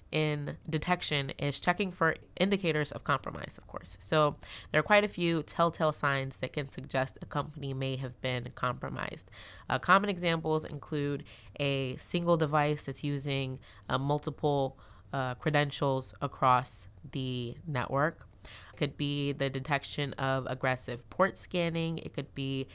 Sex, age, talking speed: female, 20-39, 145 wpm